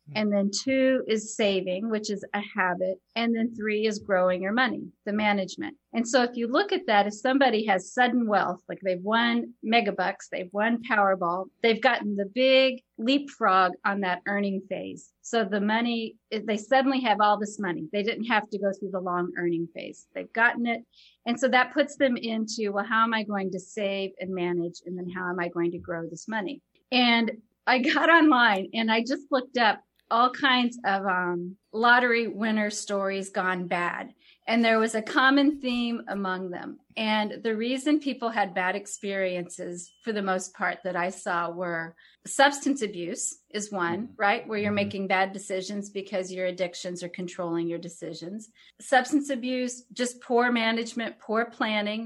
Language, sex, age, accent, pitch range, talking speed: English, female, 40-59, American, 190-235 Hz, 180 wpm